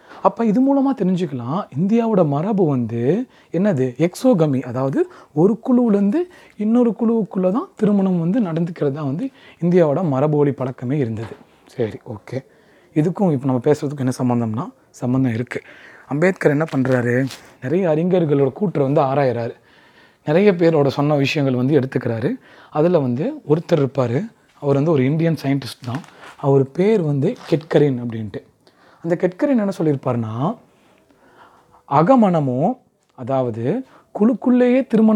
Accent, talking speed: Indian, 85 wpm